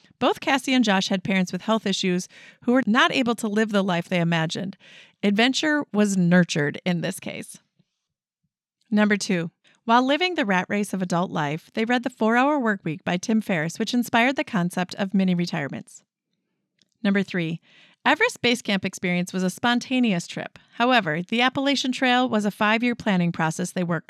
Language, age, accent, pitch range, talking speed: English, 30-49, American, 190-240 Hz, 180 wpm